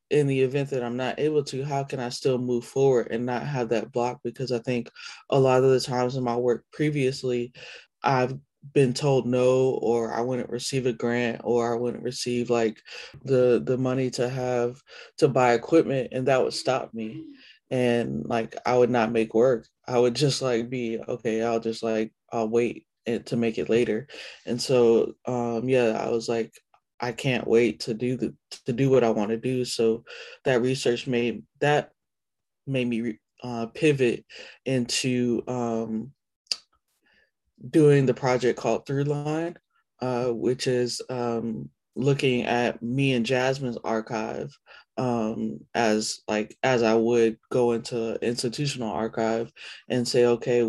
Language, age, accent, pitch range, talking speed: English, 20-39, American, 115-130 Hz, 165 wpm